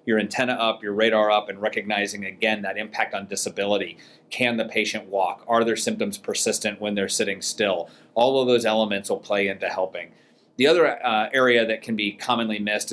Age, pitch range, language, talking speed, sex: 30-49, 100-110 Hz, English, 195 wpm, male